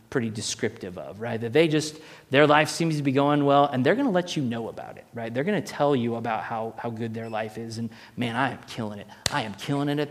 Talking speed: 265 wpm